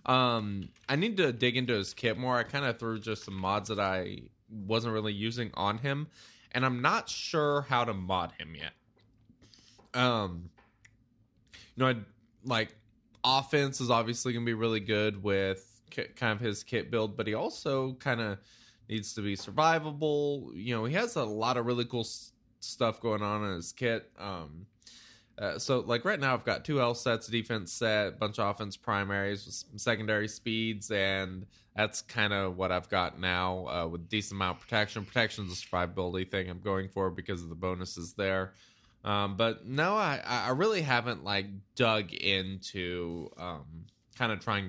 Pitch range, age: 95-120 Hz, 20-39